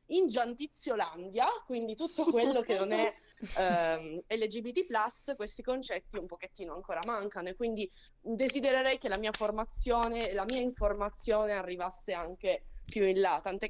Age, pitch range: 20-39, 195-250 Hz